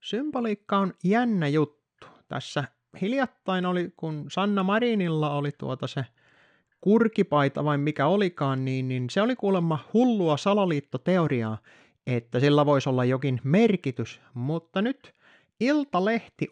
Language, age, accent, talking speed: Finnish, 30-49, native, 120 wpm